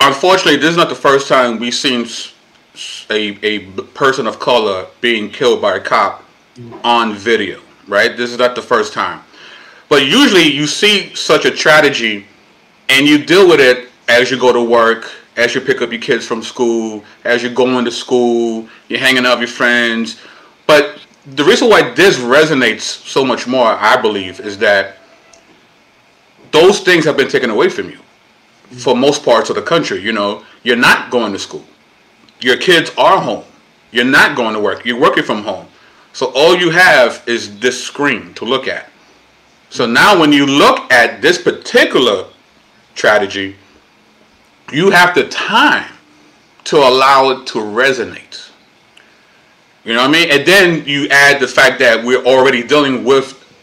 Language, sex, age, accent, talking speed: English, male, 30-49, American, 175 wpm